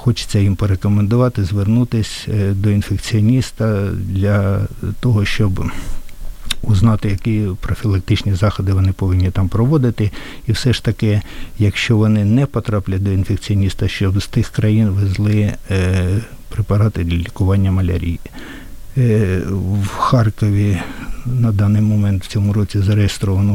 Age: 60-79